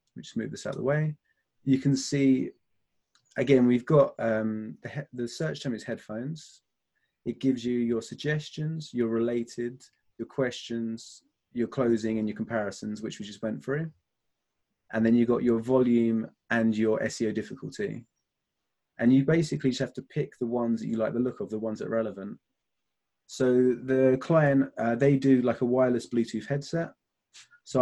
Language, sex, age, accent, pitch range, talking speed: English, male, 30-49, British, 110-130 Hz, 175 wpm